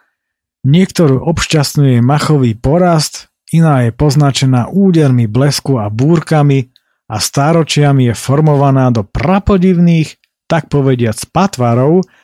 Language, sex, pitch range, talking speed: Slovak, male, 115-155 Hz, 100 wpm